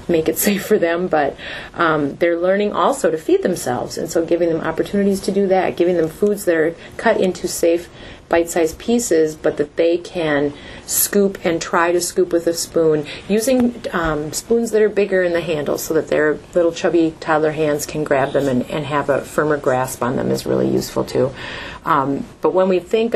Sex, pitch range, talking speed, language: female, 145-185 Hz, 205 wpm, English